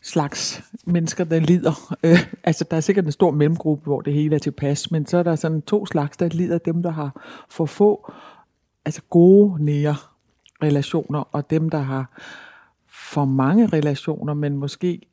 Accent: native